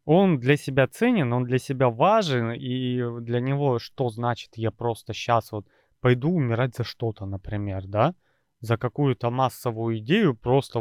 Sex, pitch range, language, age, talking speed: male, 120-155 Hz, Russian, 20-39, 155 wpm